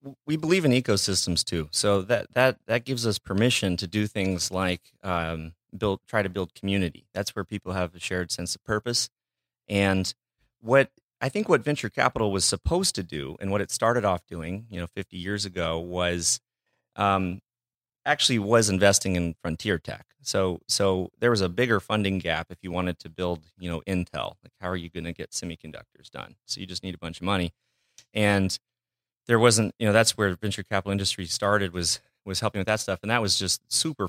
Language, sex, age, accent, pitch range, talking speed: English, male, 30-49, American, 90-110 Hz, 205 wpm